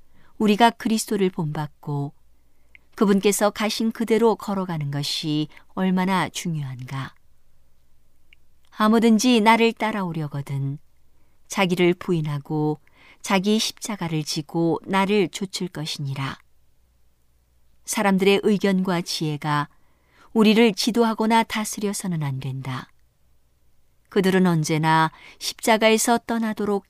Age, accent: 50-69, native